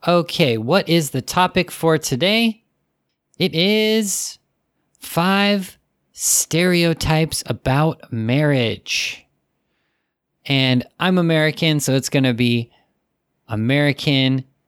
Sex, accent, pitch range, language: male, American, 120-160 Hz, Japanese